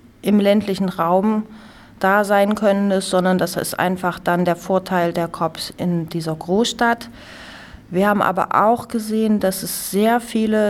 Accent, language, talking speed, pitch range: German, German, 150 wpm, 180-215 Hz